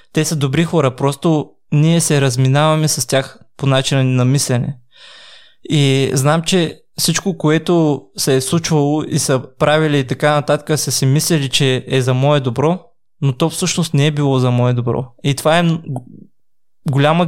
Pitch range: 130-155 Hz